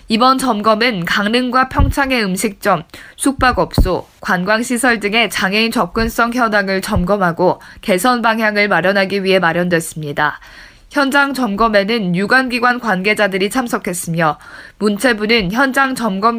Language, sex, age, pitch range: Korean, female, 20-39, 195-255 Hz